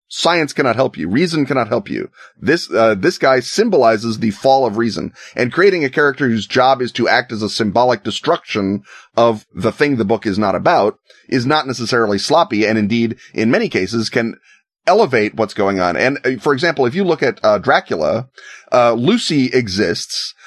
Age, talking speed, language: 30-49, 190 wpm, English